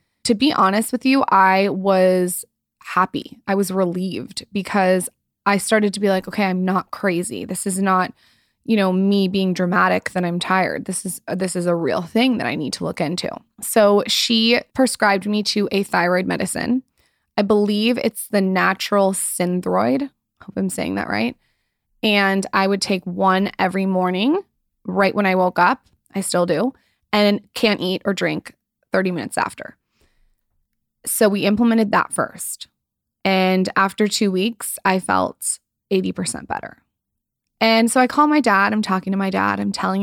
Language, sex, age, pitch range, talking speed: English, female, 20-39, 190-230 Hz, 170 wpm